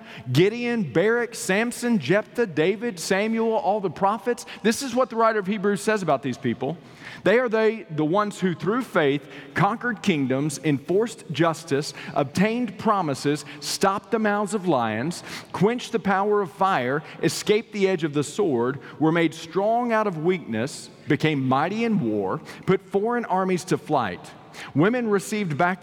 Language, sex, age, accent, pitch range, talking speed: English, male, 40-59, American, 150-205 Hz, 160 wpm